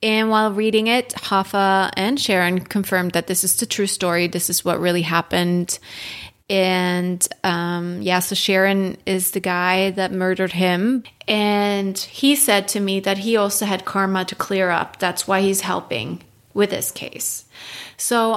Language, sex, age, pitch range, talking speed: English, female, 30-49, 185-220 Hz, 165 wpm